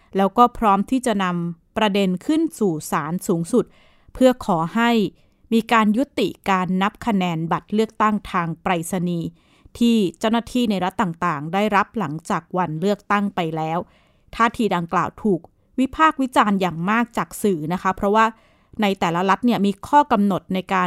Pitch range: 180-235 Hz